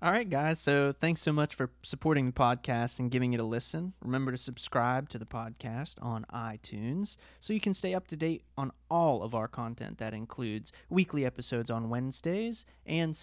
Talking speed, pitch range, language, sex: 195 wpm, 115-165 Hz, English, male